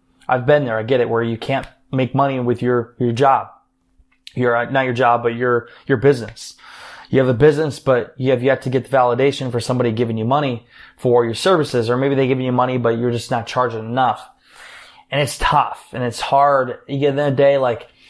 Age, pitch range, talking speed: 20-39, 120-145 Hz, 230 wpm